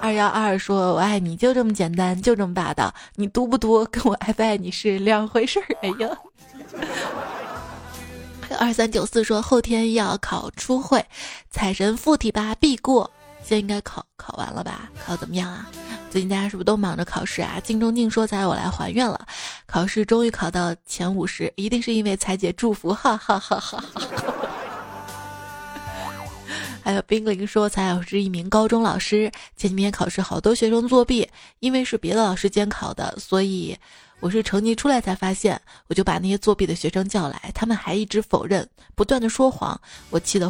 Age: 20-39